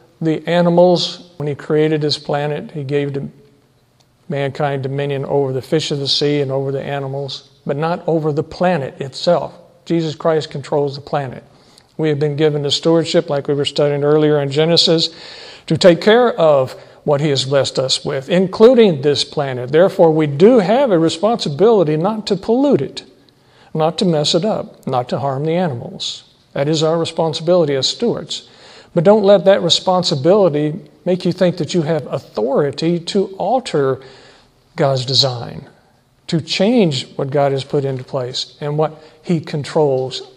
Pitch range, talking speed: 140-175 Hz, 165 wpm